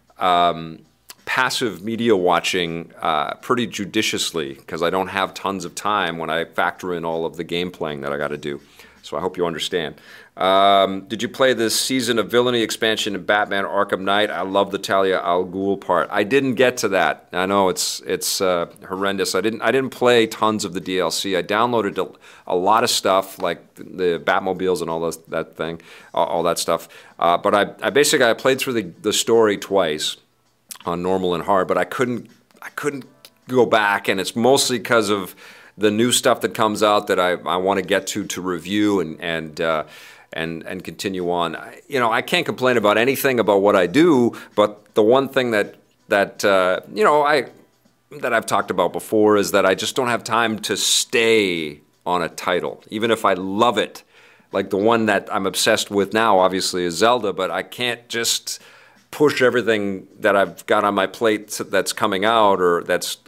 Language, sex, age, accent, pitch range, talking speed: English, male, 40-59, American, 90-110 Hz, 200 wpm